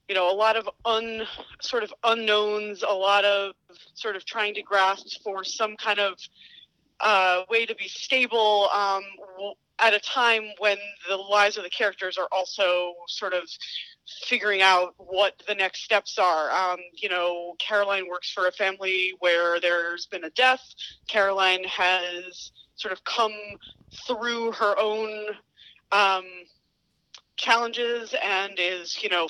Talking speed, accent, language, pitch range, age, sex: 145 wpm, American, English, 185-215 Hz, 30-49, female